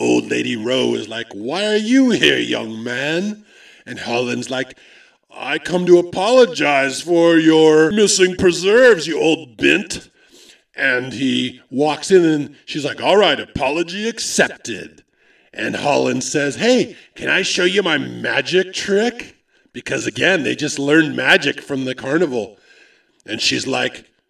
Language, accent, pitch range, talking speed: English, American, 140-195 Hz, 145 wpm